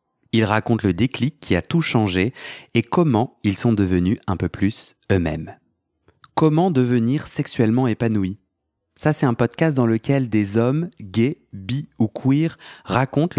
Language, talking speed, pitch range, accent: French, 150 wpm, 100-130 Hz, French